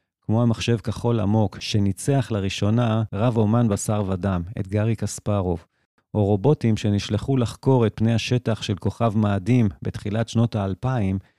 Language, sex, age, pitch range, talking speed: Hebrew, male, 40-59, 100-120 Hz, 135 wpm